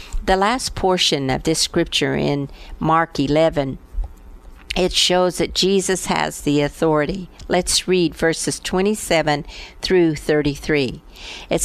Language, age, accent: English, 50-69, American